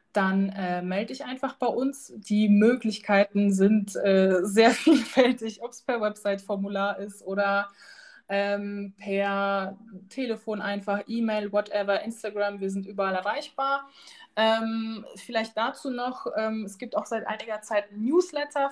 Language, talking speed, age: German, 140 wpm, 20-39